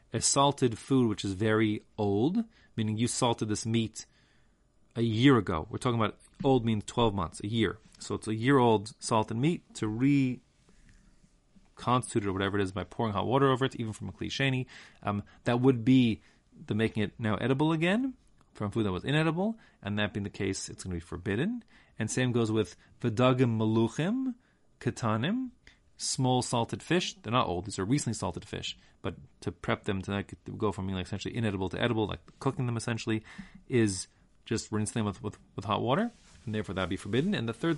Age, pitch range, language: 30-49, 105-135 Hz, English